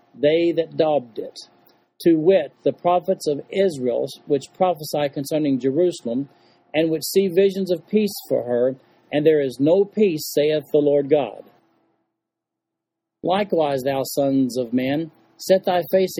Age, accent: 40-59, American